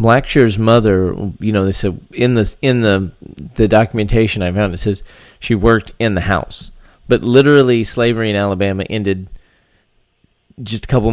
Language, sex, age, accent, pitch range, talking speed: English, male, 30-49, American, 95-115 Hz, 150 wpm